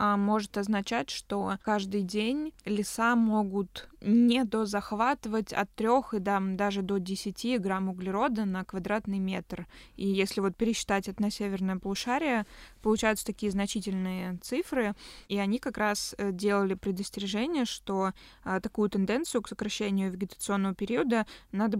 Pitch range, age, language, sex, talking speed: 195-220 Hz, 20-39, Russian, female, 125 wpm